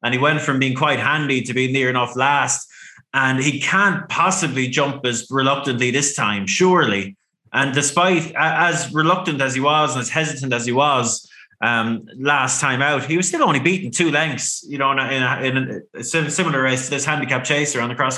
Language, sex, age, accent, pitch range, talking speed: English, male, 20-39, Irish, 125-150 Hz, 200 wpm